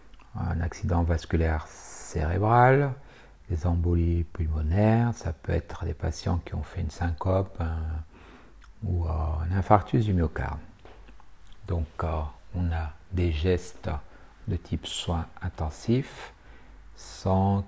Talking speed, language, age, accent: 110 wpm, French, 60-79, French